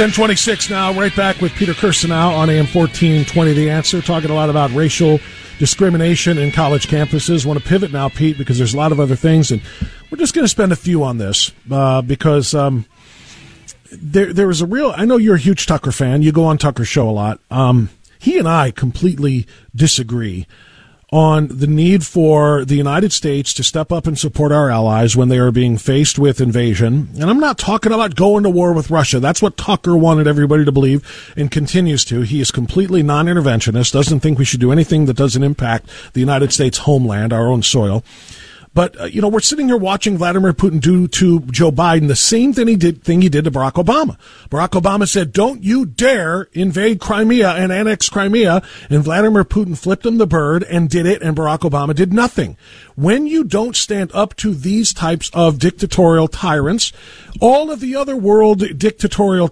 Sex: male